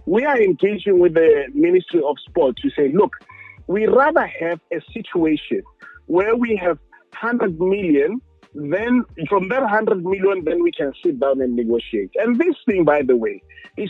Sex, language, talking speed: male, English, 175 wpm